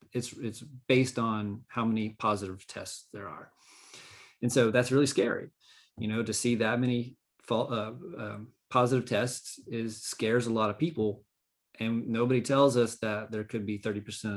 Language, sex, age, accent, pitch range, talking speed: English, male, 30-49, American, 110-130 Hz, 175 wpm